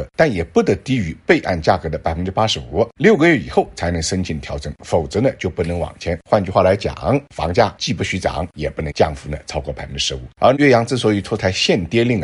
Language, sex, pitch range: Chinese, male, 80-105 Hz